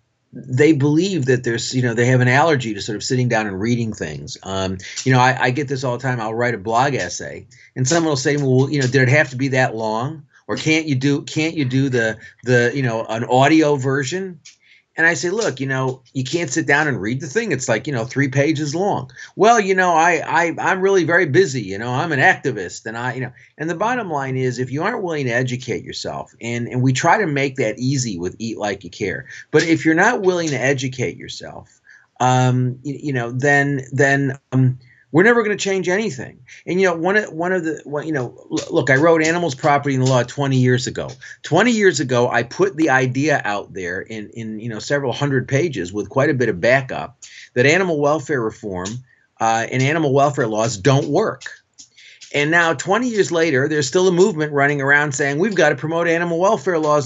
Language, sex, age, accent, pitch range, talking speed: English, male, 40-59, American, 125-160 Hz, 230 wpm